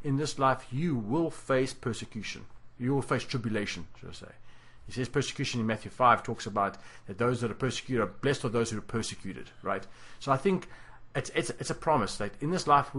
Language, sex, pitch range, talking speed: English, male, 110-140 Hz, 220 wpm